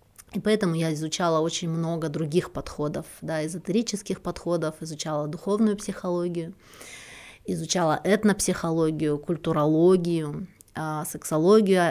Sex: female